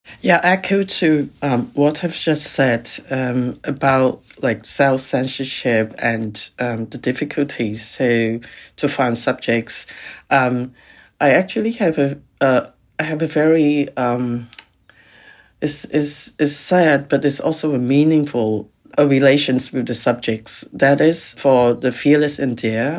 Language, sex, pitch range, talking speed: English, female, 120-145 Hz, 135 wpm